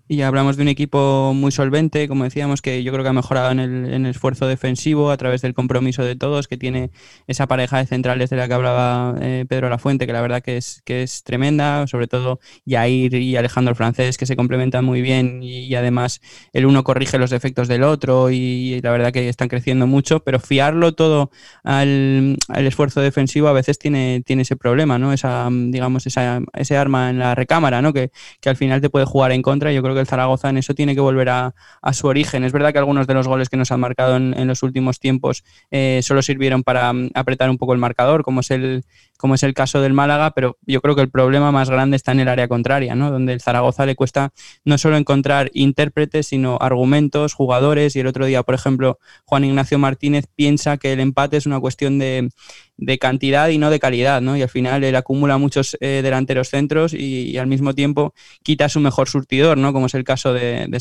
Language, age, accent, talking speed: Spanish, 20-39, Spanish, 235 wpm